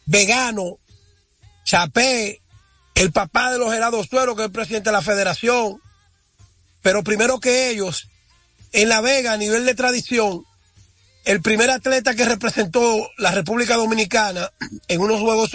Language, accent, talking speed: Spanish, American, 145 wpm